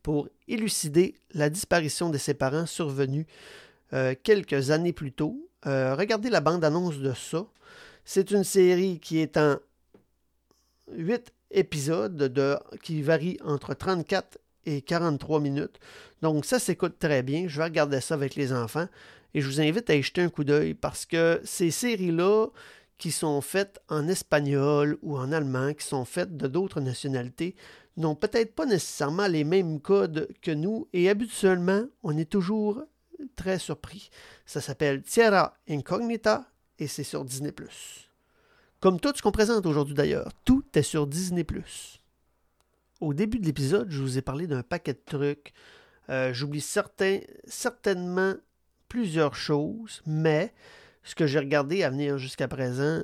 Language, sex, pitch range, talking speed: French, male, 145-195 Hz, 155 wpm